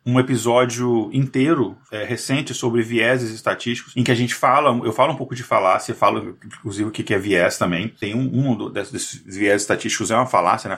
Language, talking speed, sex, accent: Portuguese, 200 wpm, male, Brazilian